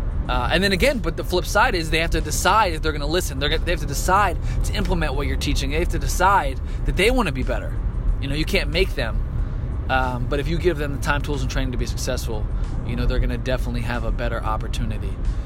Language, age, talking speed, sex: English, 20-39, 265 wpm, male